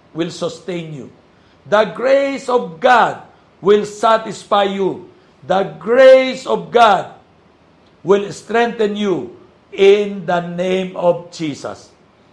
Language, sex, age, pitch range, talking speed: Filipino, male, 60-79, 155-205 Hz, 105 wpm